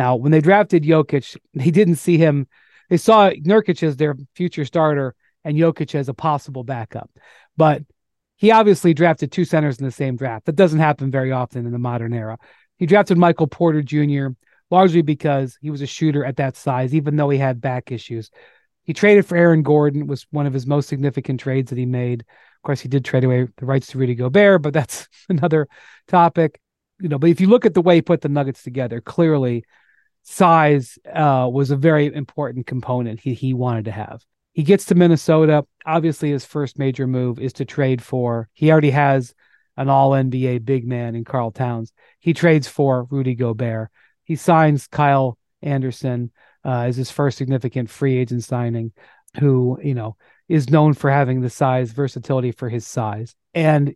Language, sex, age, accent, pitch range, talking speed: English, male, 40-59, American, 125-160 Hz, 190 wpm